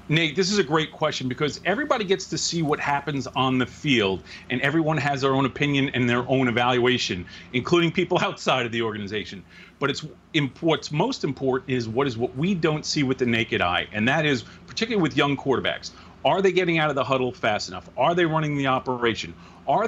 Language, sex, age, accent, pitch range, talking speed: English, male, 40-59, American, 125-170 Hz, 210 wpm